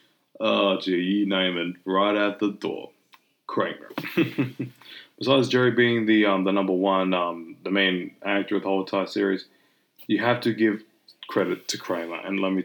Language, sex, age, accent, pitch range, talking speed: English, male, 20-39, American, 95-115 Hz, 175 wpm